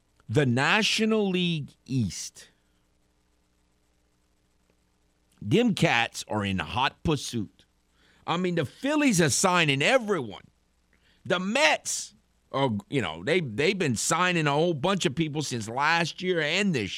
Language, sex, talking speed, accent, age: English, male, 125 wpm, American, 50-69